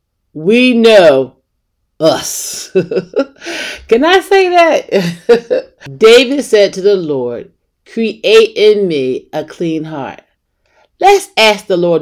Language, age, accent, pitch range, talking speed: English, 50-69, American, 165-275 Hz, 110 wpm